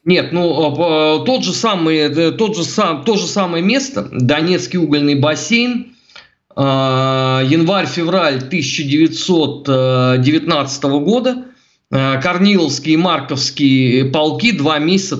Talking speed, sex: 95 wpm, male